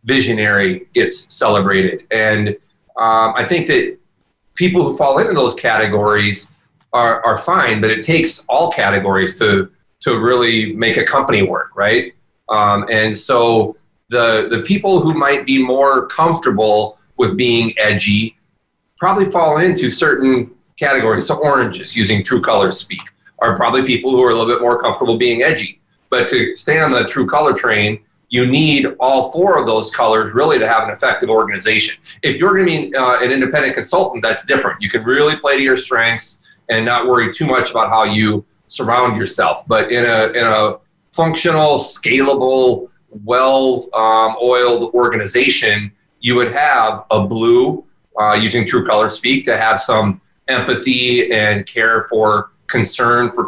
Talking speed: 160 wpm